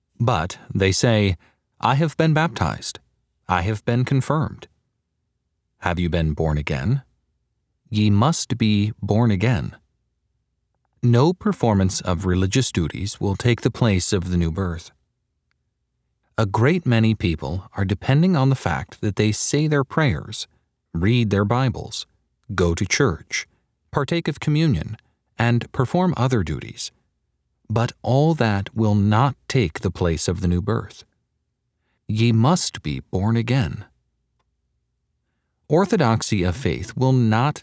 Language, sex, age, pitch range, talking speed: English, male, 40-59, 95-130 Hz, 130 wpm